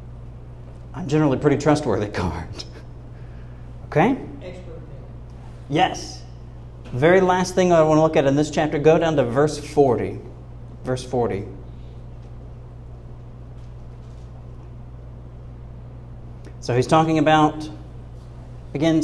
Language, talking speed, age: English, 100 wpm, 40-59